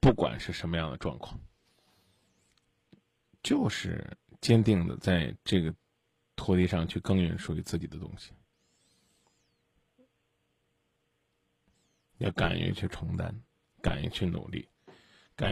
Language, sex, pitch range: Chinese, male, 90-110 Hz